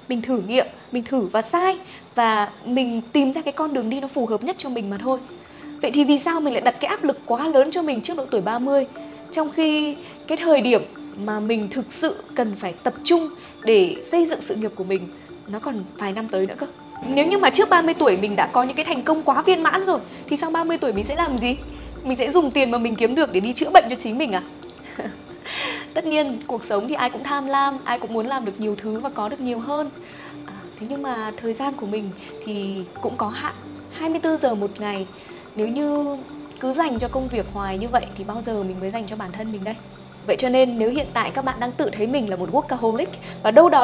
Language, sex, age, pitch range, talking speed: Vietnamese, female, 20-39, 215-295 Hz, 255 wpm